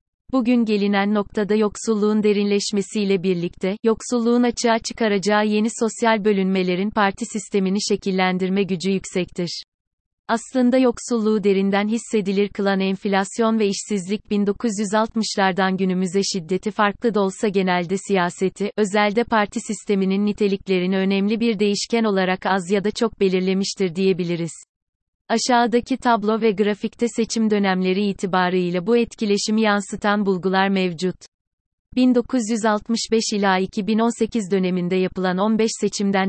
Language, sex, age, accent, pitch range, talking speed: Turkish, female, 30-49, native, 190-220 Hz, 110 wpm